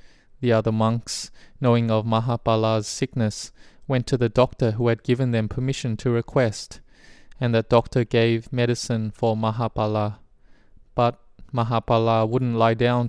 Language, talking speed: English, 140 wpm